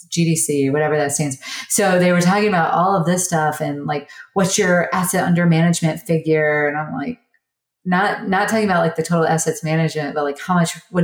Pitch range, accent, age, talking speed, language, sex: 145-195 Hz, American, 30-49, 210 wpm, English, female